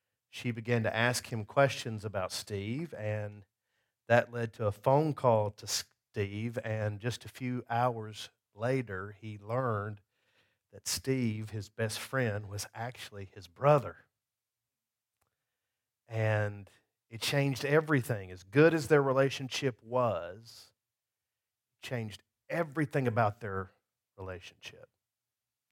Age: 50-69